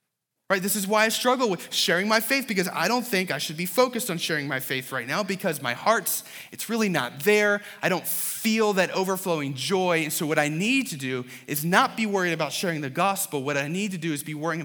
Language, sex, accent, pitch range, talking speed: English, male, American, 125-180 Hz, 245 wpm